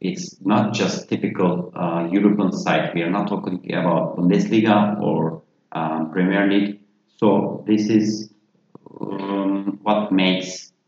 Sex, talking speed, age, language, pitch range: male, 125 wpm, 40-59, English, 95-110 Hz